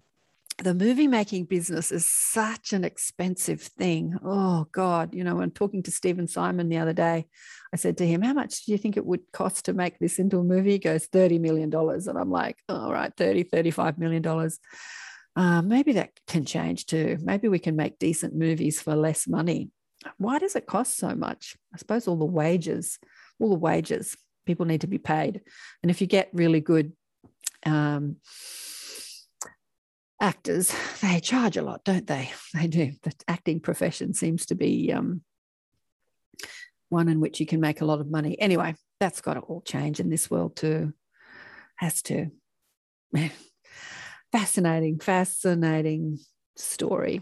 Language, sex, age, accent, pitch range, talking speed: English, female, 40-59, Australian, 160-195 Hz, 170 wpm